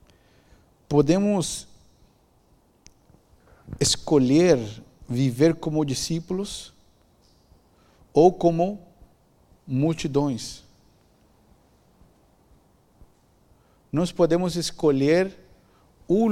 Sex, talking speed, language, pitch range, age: male, 45 wpm, Portuguese, 115-150 Hz, 50-69